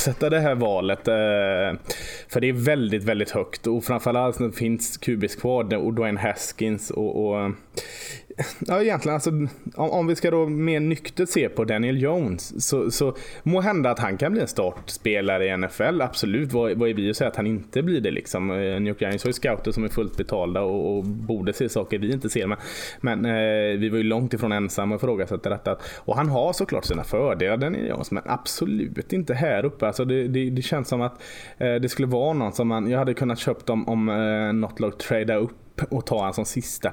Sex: male